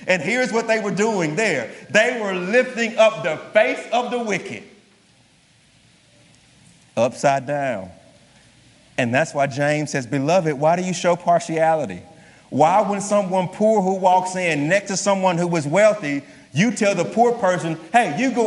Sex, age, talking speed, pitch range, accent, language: male, 40-59, 160 wpm, 160-230 Hz, American, English